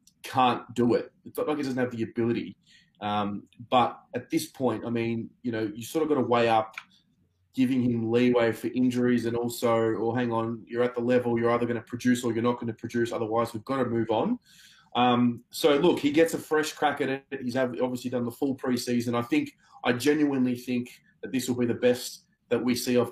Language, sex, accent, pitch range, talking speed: English, male, Australian, 115-135 Hz, 230 wpm